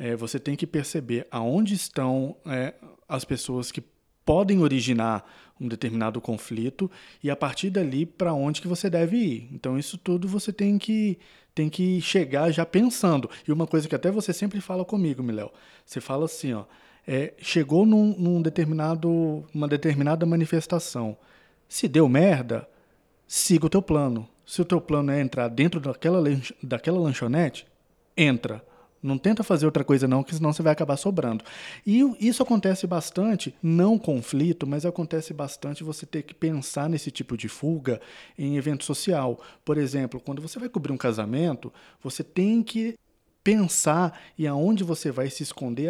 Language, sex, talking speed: Portuguese, male, 165 wpm